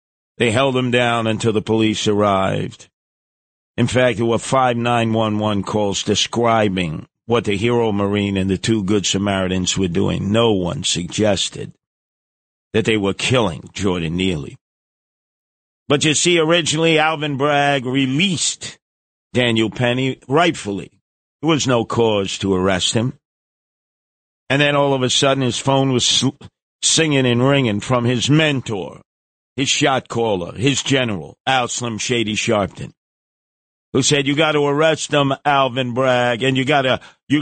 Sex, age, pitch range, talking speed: male, 50-69, 110-155 Hz, 140 wpm